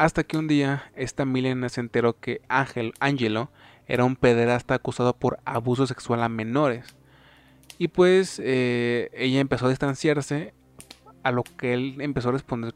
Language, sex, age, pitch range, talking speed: Spanish, male, 20-39, 120-150 Hz, 160 wpm